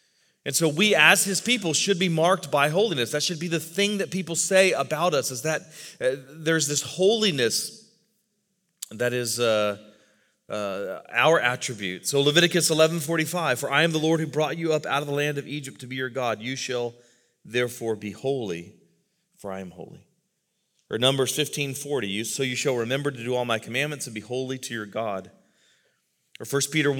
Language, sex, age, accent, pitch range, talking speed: English, male, 30-49, American, 120-175 Hz, 185 wpm